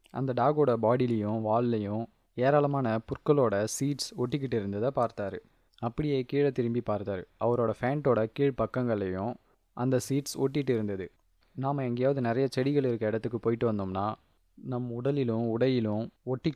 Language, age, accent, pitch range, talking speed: Tamil, 20-39, native, 110-130 Hz, 115 wpm